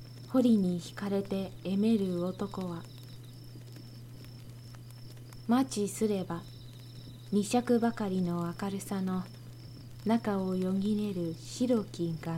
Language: Japanese